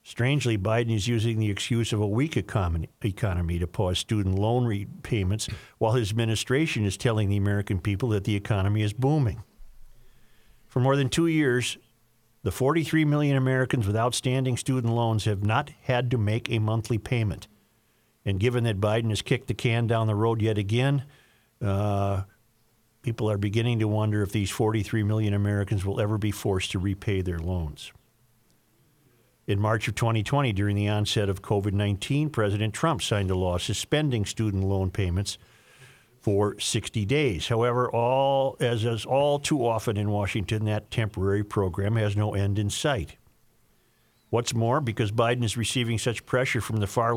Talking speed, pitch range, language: 165 wpm, 105-125 Hz, English